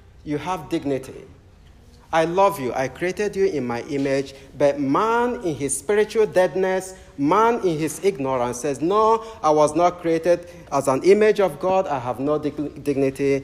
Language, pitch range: English, 115-180 Hz